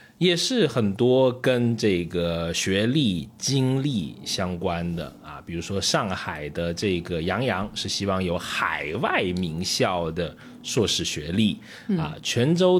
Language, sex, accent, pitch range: Chinese, male, native, 90-130 Hz